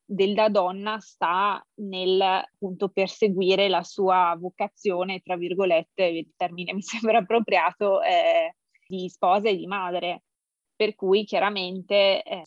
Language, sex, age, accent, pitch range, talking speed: Italian, female, 20-39, native, 185-205 Hz, 125 wpm